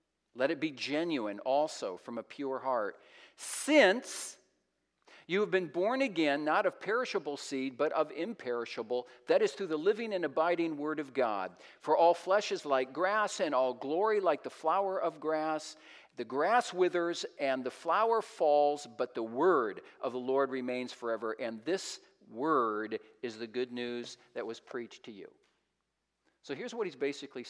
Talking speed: 170 wpm